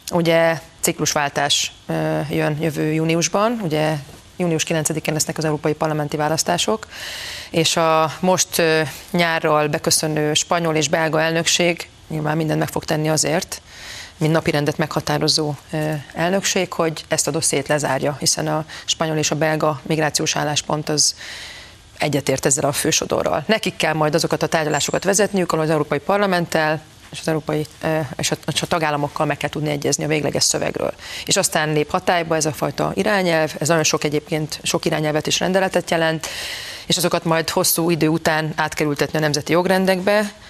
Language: Hungarian